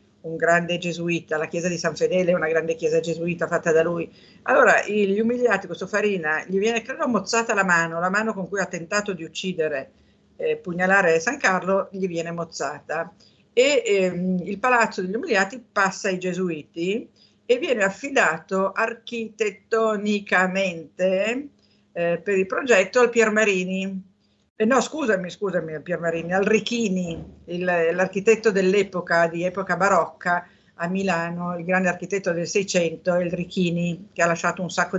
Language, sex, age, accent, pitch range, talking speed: Italian, female, 50-69, native, 175-210 Hz, 150 wpm